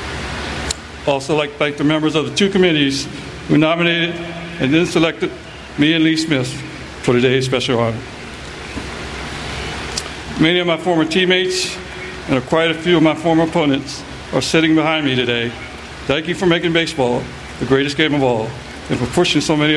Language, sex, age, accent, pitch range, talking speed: English, male, 60-79, American, 120-160 Hz, 170 wpm